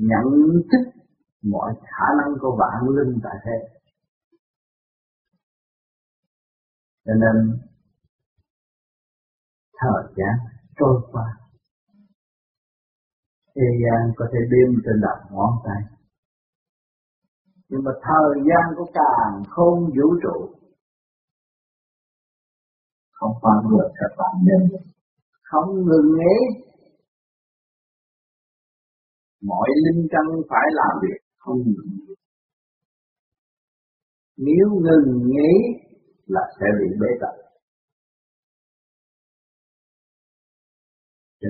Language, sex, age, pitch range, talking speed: Vietnamese, male, 50-69, 115-175 Hz, 90 wpm